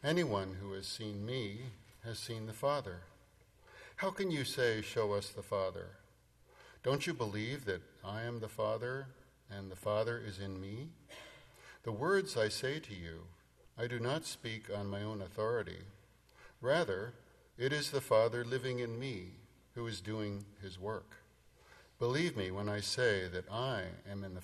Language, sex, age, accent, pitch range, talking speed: English, male, 50-69, American, 100-130 Hz, 165 wpm